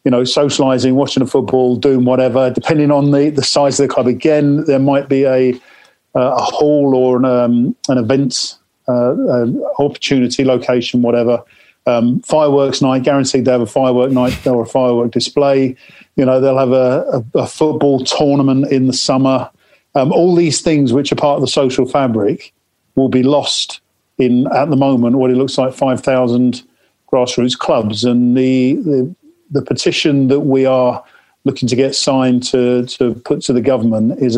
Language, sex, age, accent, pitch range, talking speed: English, male, 50-69, British, 125-140 Hz, 180 wpm